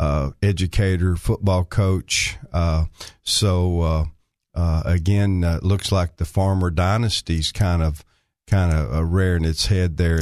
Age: 50-69